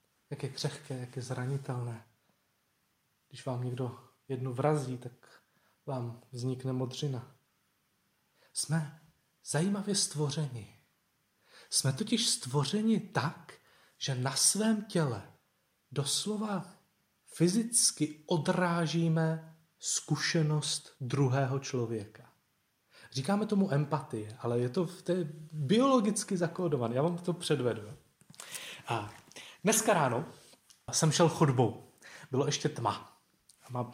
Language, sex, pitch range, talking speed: Czech, male, 130-175 Hz, 100 wpm